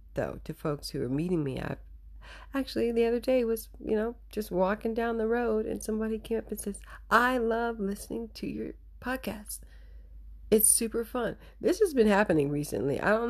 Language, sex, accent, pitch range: English, female, American, 140-210 Hz